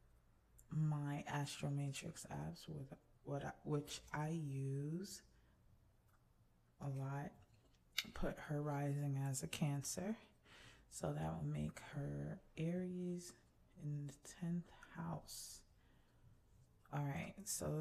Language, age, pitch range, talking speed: English, 20-39, 125-160 Hz, 100 wpm